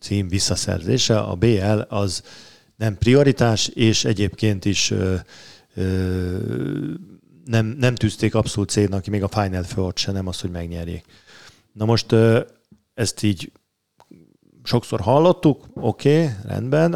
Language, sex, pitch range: Hungarian, male, 100-125 Hz